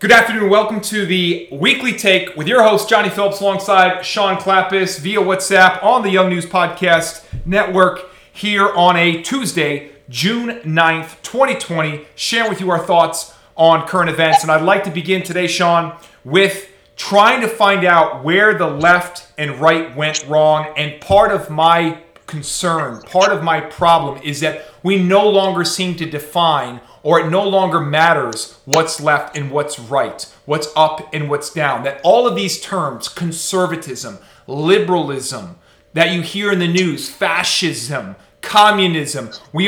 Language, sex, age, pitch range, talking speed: English, male, 40-59, 155-195 Hz, 160 wpm